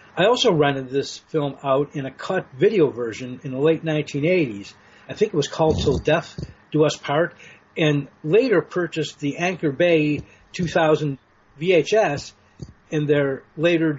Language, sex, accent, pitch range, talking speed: English, male, American, 125-155 Hz, 155 wpm